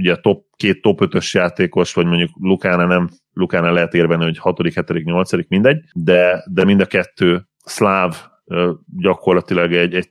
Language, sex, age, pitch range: Hungarian, male, 30-49, 85-95 Hz